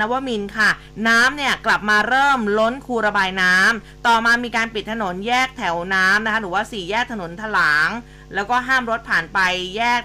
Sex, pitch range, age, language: female, 195-235 Hz, 20-39, Thai